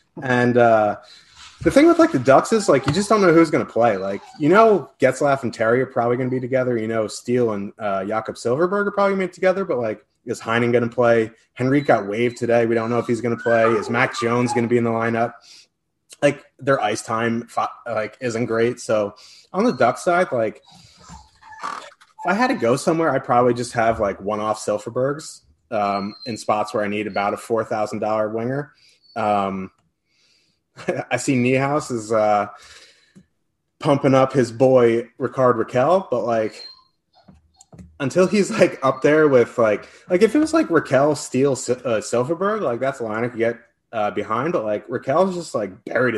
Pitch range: 115-150 Hz